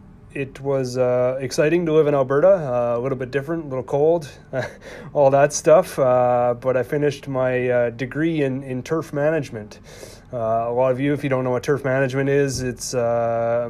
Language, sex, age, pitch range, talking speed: English, male, 30-49, 115-135 Hz, 195 wpm